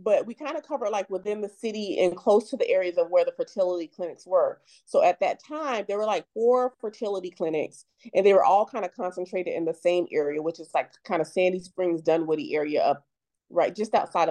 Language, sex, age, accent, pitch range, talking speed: English, female, 30-49, American, 175-235 Hz, 225 wpm